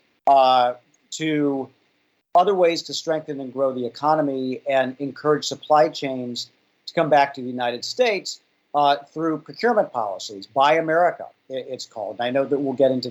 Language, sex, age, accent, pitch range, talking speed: English, male, 50-69, American, 130-160 Hz, 160 wpm